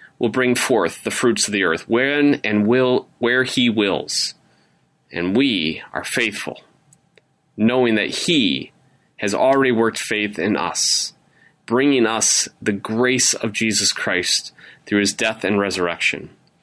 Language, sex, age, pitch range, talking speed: English, male, 30-49, 105-135 Hz, 140 wpm